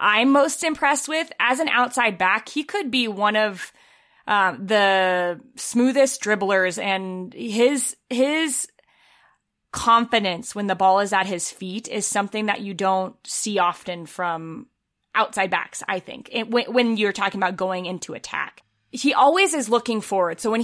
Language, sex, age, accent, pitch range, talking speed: English, female, 20-39, American, 195-260 Hz, 165 wpm